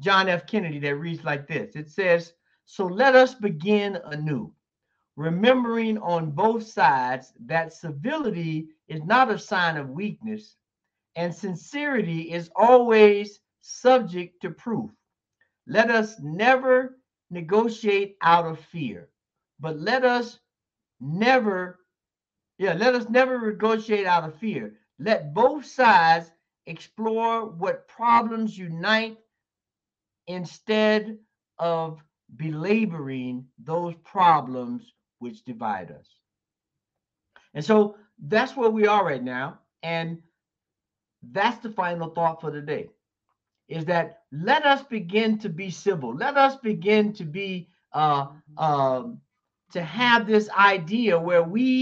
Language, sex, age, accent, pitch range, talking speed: English, male, 60-79, American, 165-220 Hz, 120 wpm